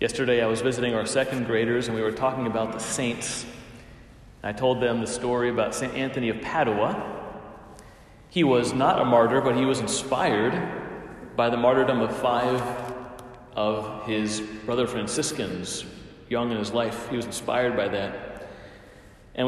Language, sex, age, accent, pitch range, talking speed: English, male, 30-49, American, 110-130 Hz, 160 wpm